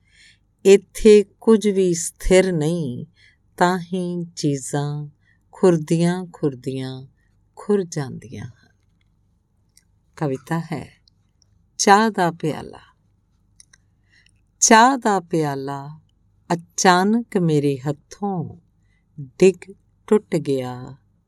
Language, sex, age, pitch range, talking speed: Punjabi, female, 50-69, 135-190 Hz, 75 wpm